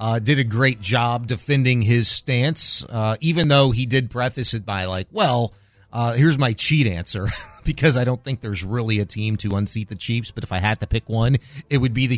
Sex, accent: male, American